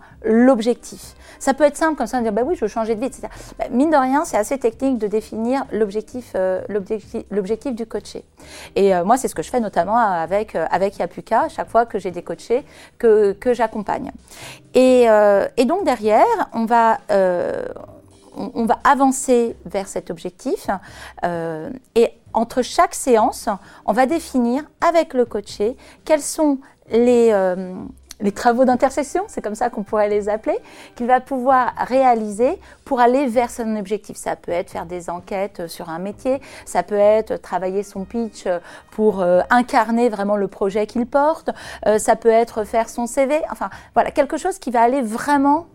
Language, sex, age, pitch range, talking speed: French, female, 40-59, 210-265 Hz, 185 wpm